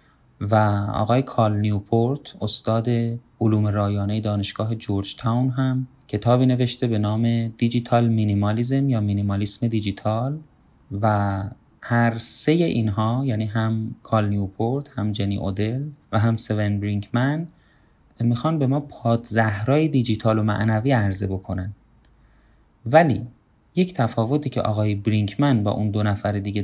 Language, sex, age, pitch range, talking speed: Persian, male, 30-49, 105-130 Hz, 125 wpm